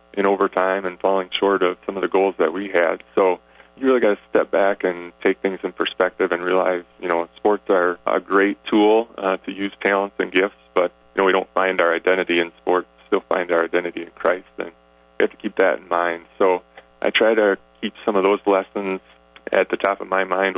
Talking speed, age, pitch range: 235 wpm, 20-39, 85-95 Hz